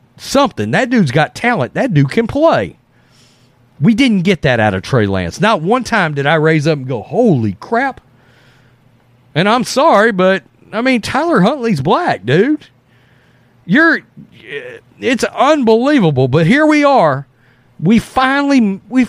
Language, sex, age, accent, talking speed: English, male, 40-59, American, 150 wpm